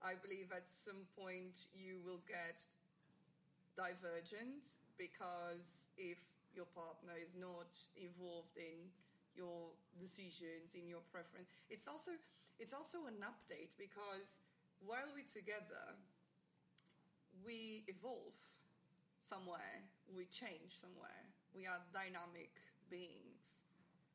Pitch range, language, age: 175-200 Hz, English, 20-39